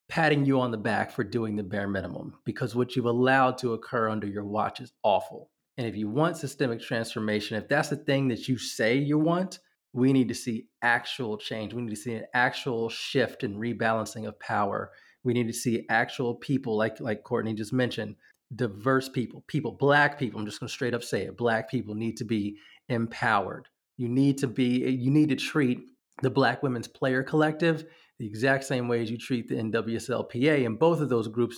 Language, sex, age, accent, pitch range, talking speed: English, male, 30-49, American, 115-145 Hz, 210 wpm